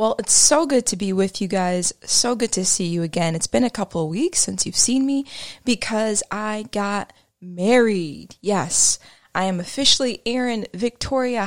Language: English